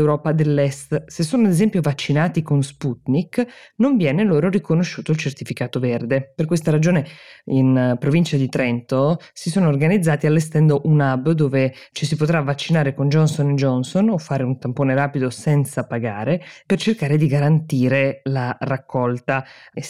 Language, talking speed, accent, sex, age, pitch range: Italian, 155 wpm, native, female, 20-39, 135-175 Hz